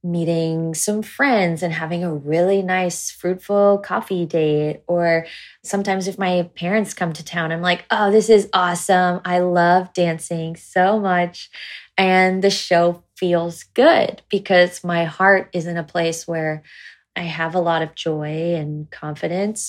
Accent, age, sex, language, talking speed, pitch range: American, 20-39, female, English, 155 wpm, 170-195 Hz